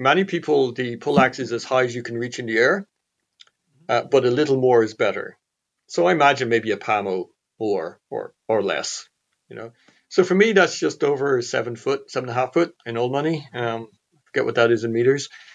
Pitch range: 115-145 Hz